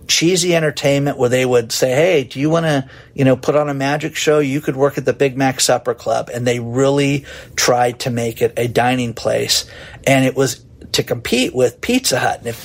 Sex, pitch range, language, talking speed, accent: male, 125-155 Hz, English, 225 wpm, American